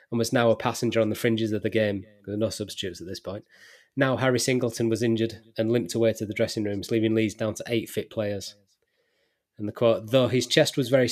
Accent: British